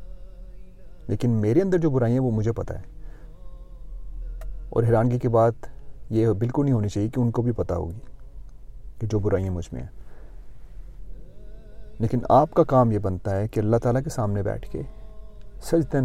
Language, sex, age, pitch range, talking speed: Urdu, male, 40-59, 105-130 Hz, 170 wpm